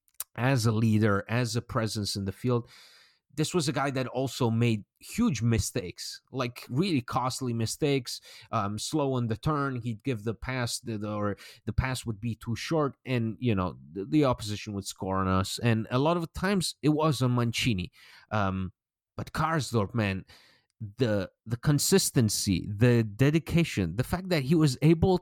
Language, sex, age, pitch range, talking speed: English, male, 30-49, 105-140 Hz, 170 wpm